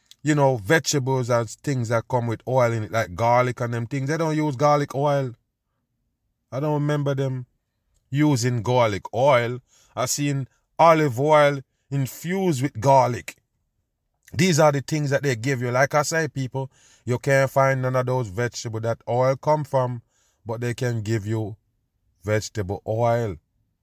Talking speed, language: 165 wpm, English